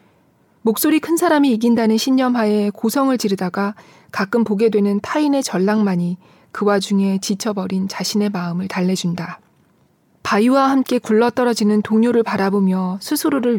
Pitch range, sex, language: 195-240 Hz, female, Korean